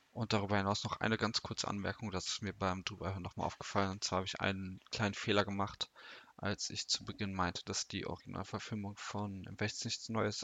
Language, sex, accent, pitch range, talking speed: German, male, German, 95-110 Hz, 205 wpm